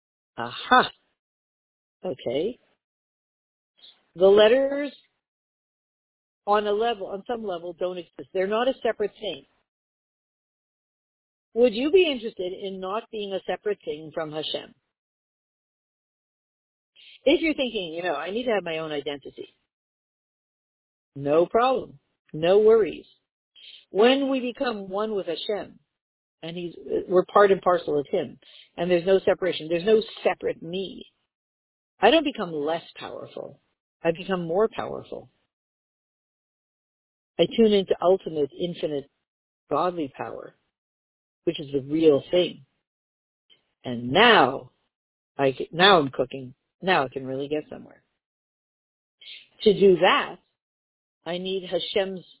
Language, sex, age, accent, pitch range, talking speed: English, female, 50-69, American, 155-215 Hz, 120 wpm